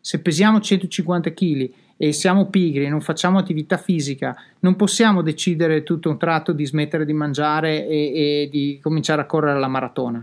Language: Italian